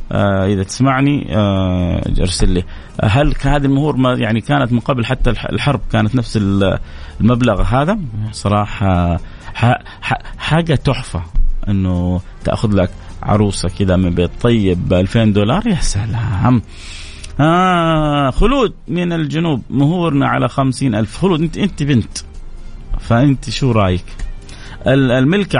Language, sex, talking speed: Arabic, male, 115 wpm